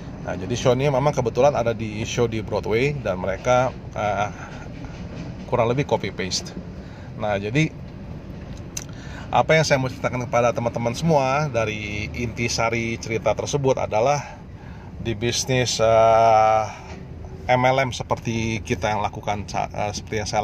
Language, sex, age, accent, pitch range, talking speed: Indonesian, male, 30-49, native, 105-130 Hz, 135 wpm